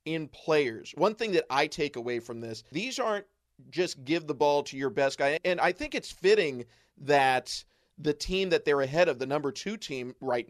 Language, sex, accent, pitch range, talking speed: English, male, American, 130-160 Hz, 210 wpm